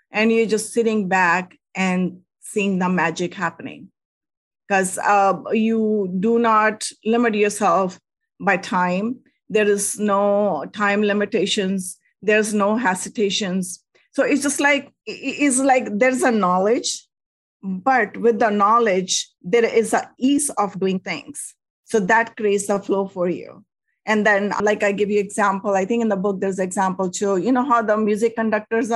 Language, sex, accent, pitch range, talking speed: English, female, Indian, 195-225 Hz, 155 wpm